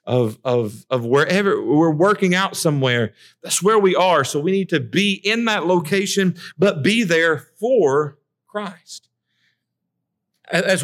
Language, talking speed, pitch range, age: English, 140 wpm, 145-210 Hz, 50-69